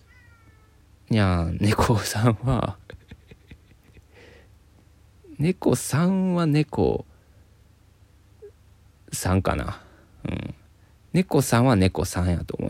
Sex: male